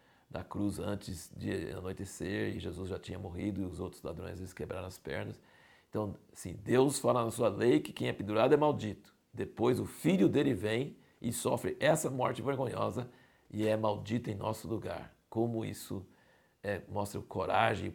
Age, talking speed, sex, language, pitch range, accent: 60-79, 180 wpm, male, Portuguese, 100-120 Hz, Brazilian